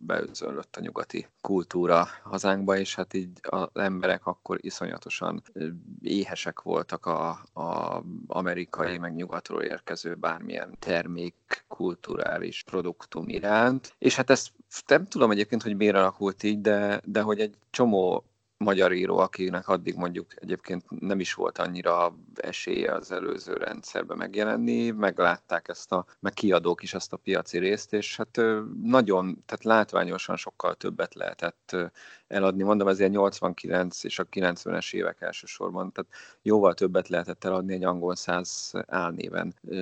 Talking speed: 135 wpm